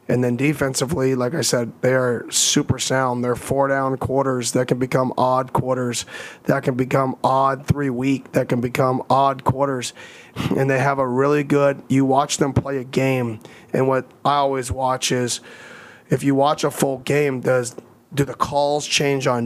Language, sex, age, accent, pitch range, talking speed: English, male, 30-49, American, 125-140 Hz, 180 wpm